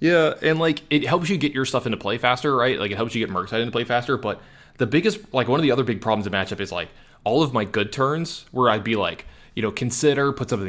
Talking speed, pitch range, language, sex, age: 285 wpm, 100-130 Hz, English, male, 20-39